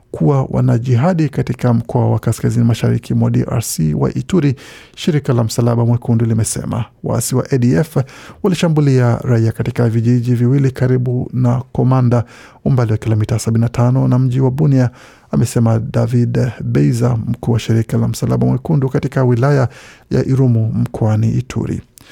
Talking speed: 140 wpm